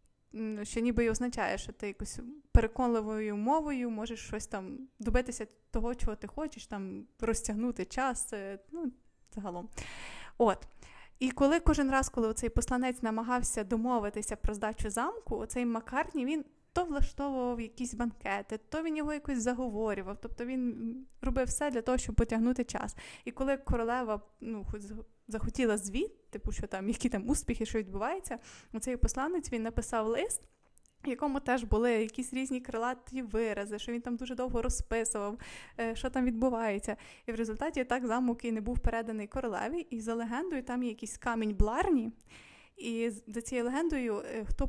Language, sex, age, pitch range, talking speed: Ukrainian, female, 20-39, 220-260 Hz, 155 wpm